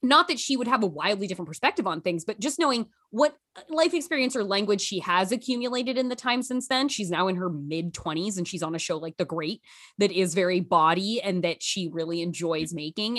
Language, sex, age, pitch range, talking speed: English, female, 20-39, 170-255 Hz, 230 wpm